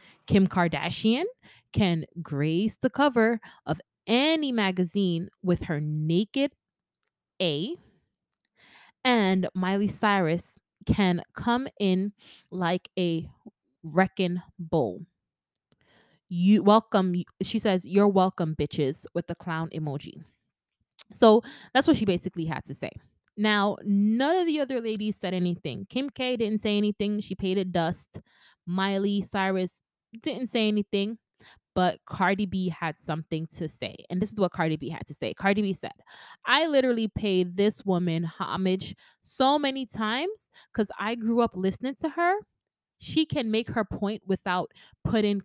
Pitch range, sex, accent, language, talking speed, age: 175-220 Hz, female, American, English, 140 wpm, 20-39